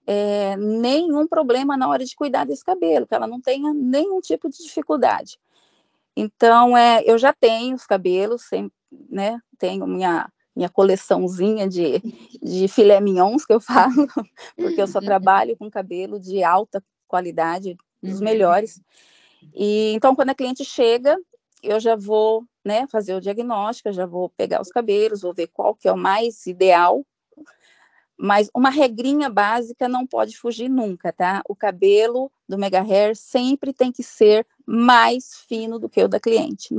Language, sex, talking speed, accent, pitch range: Portuguese, female, 165 wpm, Brazilian, 195-255 Hz